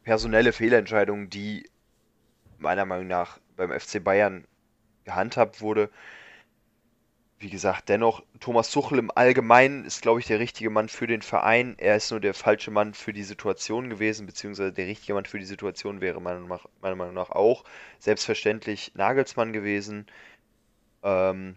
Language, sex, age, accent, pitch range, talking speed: German, male, 20-39, German, 100-115 Hz, 155 wpm